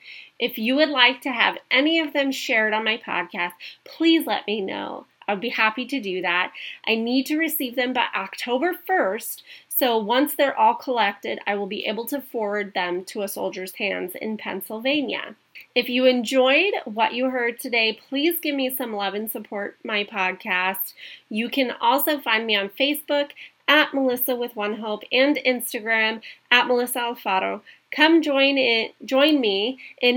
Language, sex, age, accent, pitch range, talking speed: English, female, 30-49, American, 215-275 Hz, 175 wpm